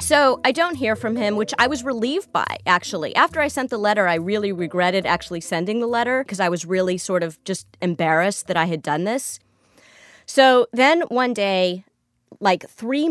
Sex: female